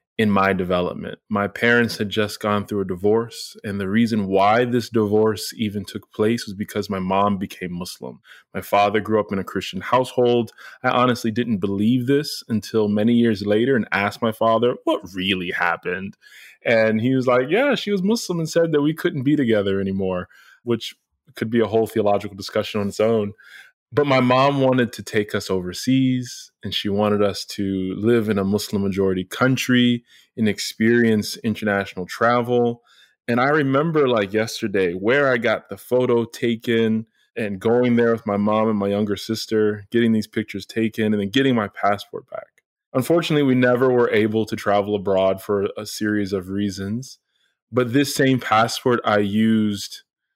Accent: American